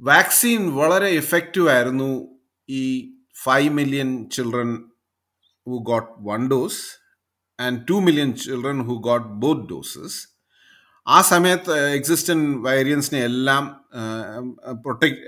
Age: 30-49